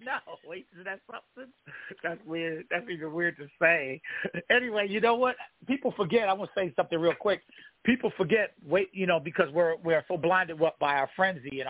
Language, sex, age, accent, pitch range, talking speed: English, male, 50-69, American, 155-225 Hz, 205 wpm